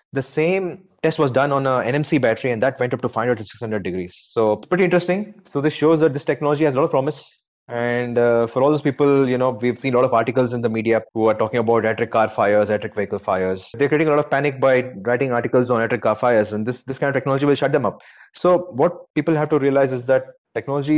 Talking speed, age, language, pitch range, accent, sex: 260 wpm, 30-49, English, 120-145 Hz, Indian, male